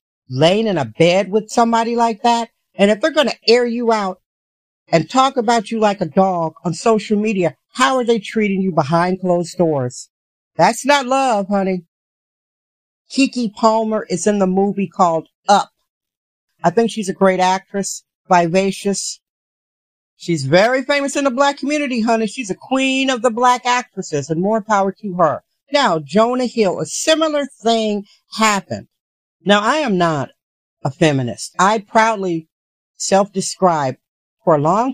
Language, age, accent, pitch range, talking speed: English, 50-69, American, 180-230 Hz, 160 wpm